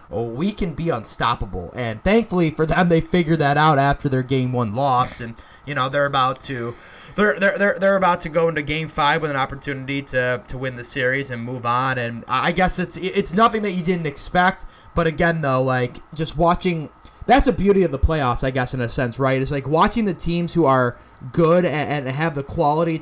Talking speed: 220 wpm